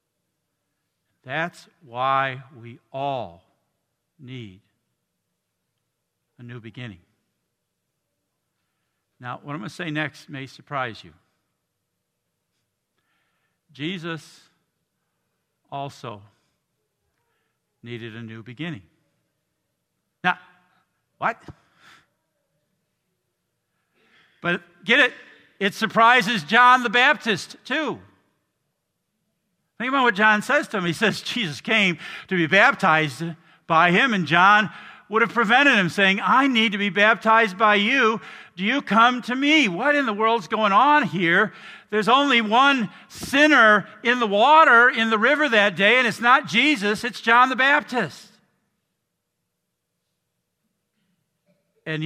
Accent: American